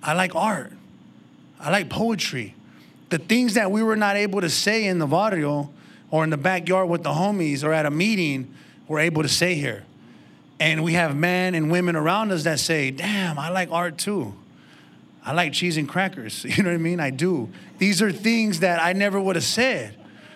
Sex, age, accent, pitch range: male, 30-49, American, 155-190 Hz